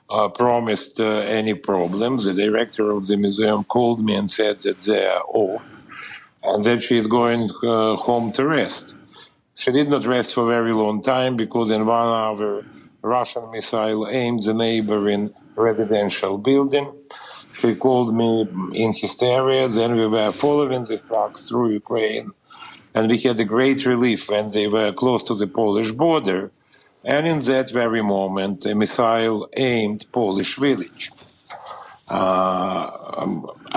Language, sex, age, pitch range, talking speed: English, male, 50-69, 105-120 Hz, 155 wpm